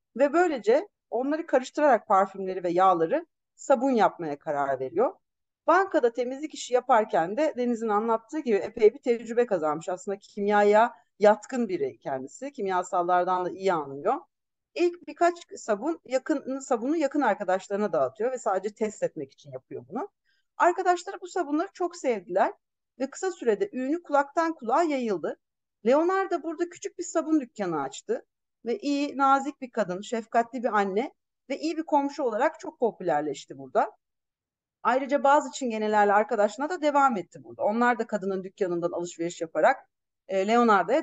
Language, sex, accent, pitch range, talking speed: Turkish, female, native, 205-310 Hz, 145 wpm